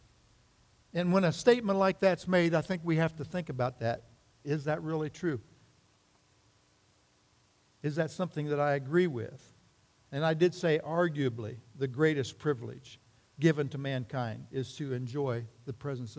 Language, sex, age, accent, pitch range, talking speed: English, male, 60-79, American, 120-150 Hz, 155 wpm